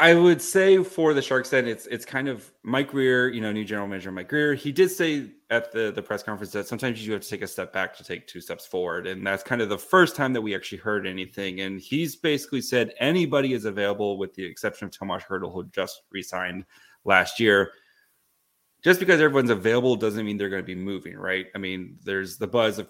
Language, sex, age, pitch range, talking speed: English, male, 30-49, 100-130 Hz, 235 wpm